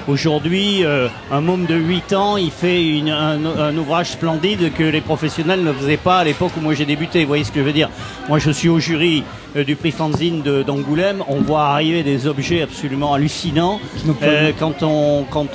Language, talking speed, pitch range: French, 210 wpm, 145-175 Hz